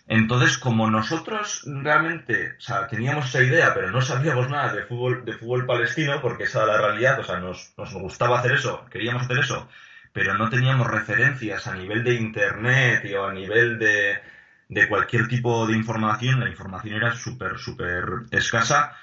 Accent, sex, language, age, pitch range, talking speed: Spanish, male, Spanish, 20-39, 110-130 Hz, 175 wpm